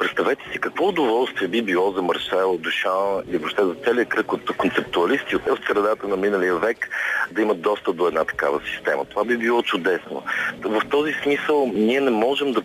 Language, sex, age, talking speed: Bulgarian, male, 40-59, 185 wpm